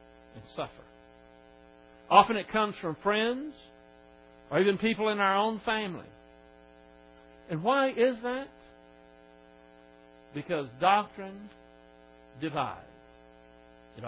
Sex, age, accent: male, 60-79, American